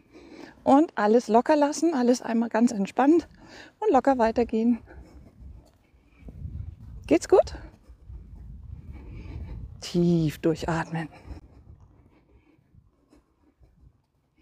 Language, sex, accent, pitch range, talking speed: German, female, German, 185-255 Hz, 60 wpm